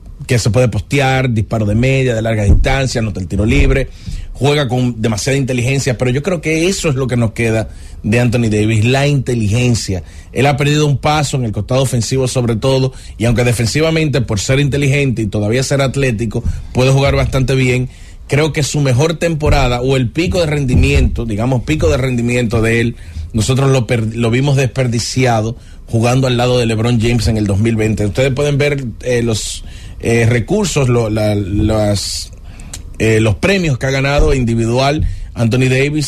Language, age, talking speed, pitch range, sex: English, 30-49, 180 wpm, 105-135 Hz, male